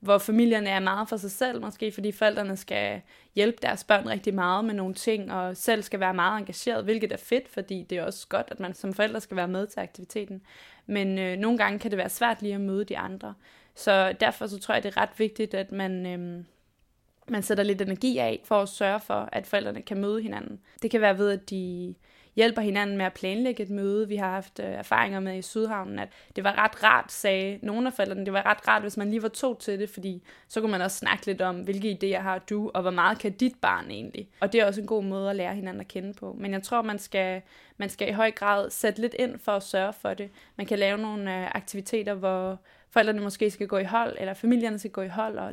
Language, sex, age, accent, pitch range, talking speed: Danish, female, 20-39, native, 195-215 Hz, 255 wpm